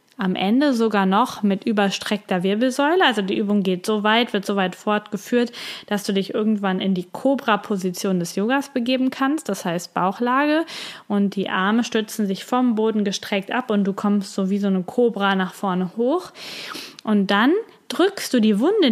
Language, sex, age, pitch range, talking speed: German, female, 20-39, 195-240 Hz, 185 wpm